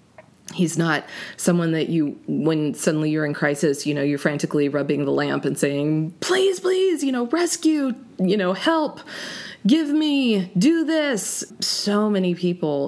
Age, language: 20-39, English